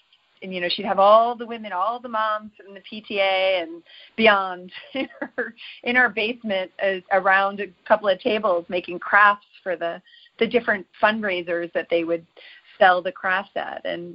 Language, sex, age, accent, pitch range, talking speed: English, female, 30-49, American, 180-225 Hz, 180 wpm